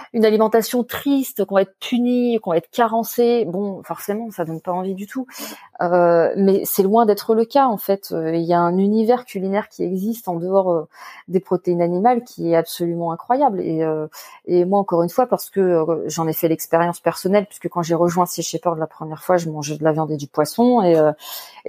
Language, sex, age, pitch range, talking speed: French, female, 30-49, 165-210 Hz, 225 wpm